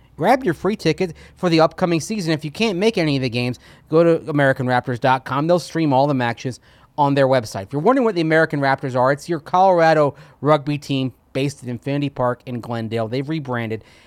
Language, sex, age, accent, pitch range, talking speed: English, male, 30-49, American, 120-155 Hz, 205 wpm